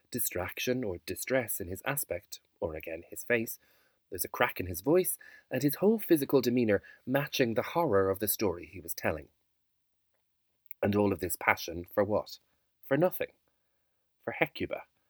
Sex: male